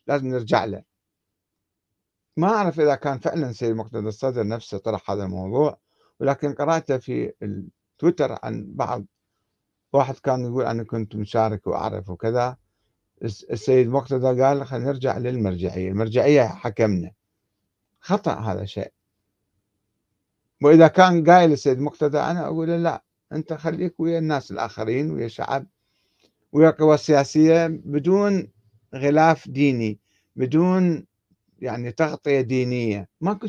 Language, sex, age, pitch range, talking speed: Arabic, male, 60-79, 105-155 Hz, 120 wpm